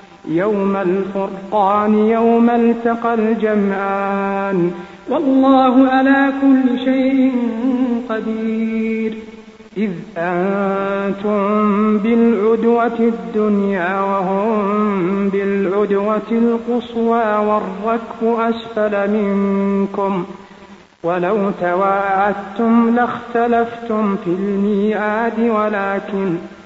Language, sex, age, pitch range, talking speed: Arabic, male, 50-69, 195-230 Hz, 60 wpm